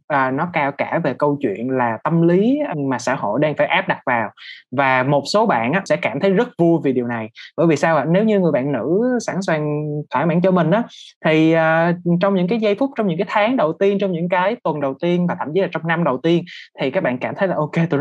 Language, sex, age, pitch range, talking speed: Vietnamese, male, 20-39, 145-195 Hz, 275 wpm